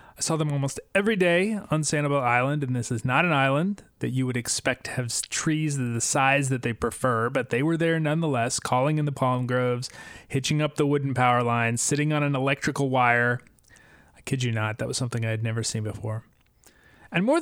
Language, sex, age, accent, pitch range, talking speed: English, male, 30-49, American, 115-155 Hz, 215 wpm